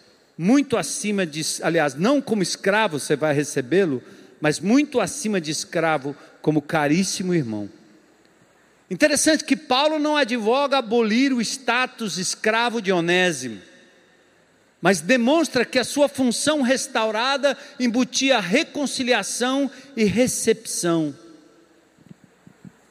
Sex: male